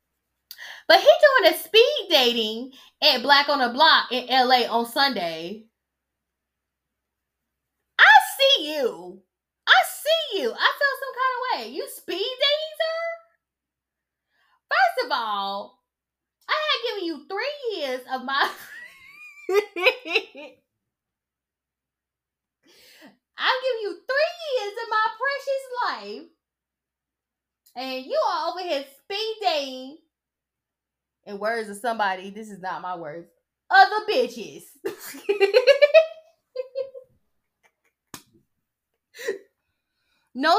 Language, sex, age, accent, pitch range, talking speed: English, female, 10-29, American, 245-400 Hz, 105 wpm